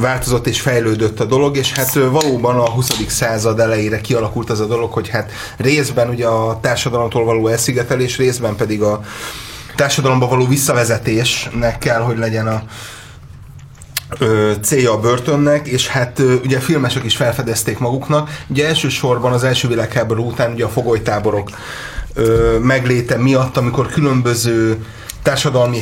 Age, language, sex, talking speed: 30-49, Hungarian, male, 140 wpm